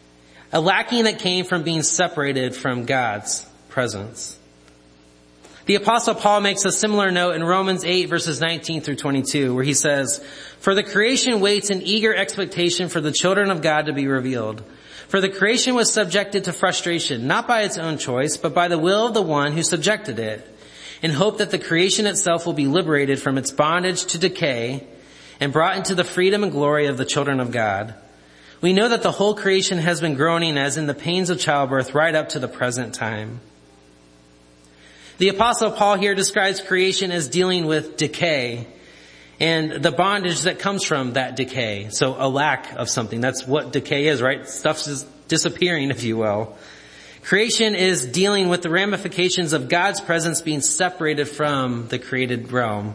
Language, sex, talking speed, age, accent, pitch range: English, male, 180 wpm, 30-49, American, 125-185 Hz